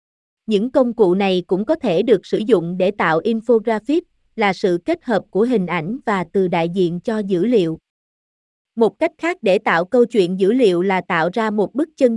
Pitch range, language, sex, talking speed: 190-260 Hz, Vietnamese, female, 205 wpm